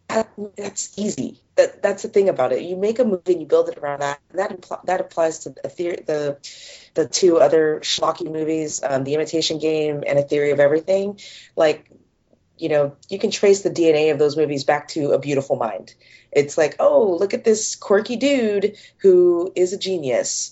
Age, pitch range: 30-49, 145-190 Hz